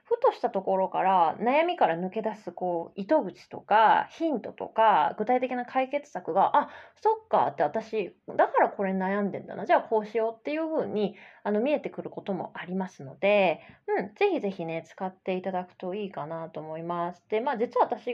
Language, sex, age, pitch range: Japanese, female, 20-39, 190-300 Hz